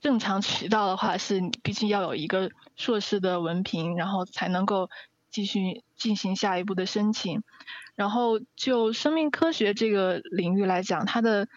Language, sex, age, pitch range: Chinese, female, 20-39, 190-230 Hz